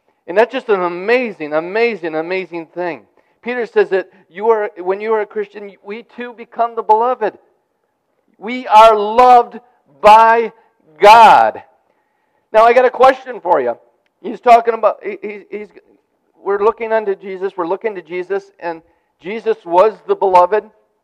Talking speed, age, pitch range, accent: 150 wpm, 50-69, 180-230 Hz, American